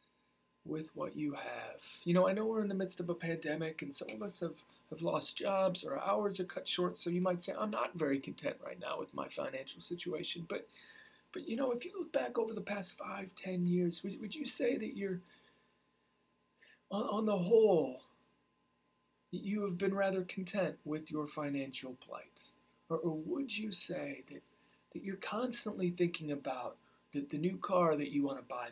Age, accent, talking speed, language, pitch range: 40-59, American, 195 wpm, English, 150-195 Hz